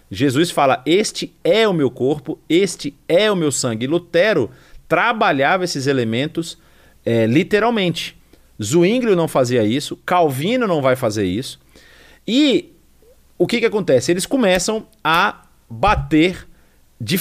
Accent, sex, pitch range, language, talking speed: Brazilian, male, 130-185 Hz, English, 135 wpm